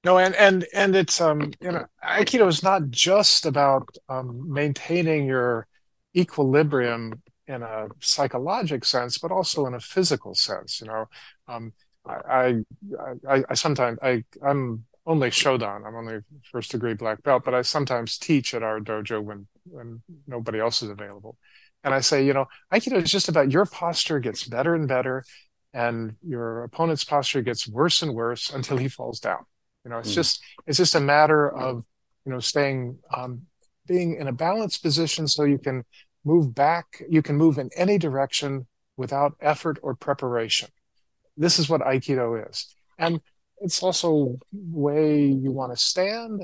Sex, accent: male, American